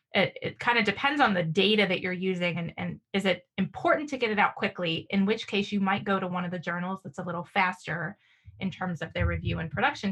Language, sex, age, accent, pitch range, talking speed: English, female, 20-39, American, 185-220 Hz, 250 wpm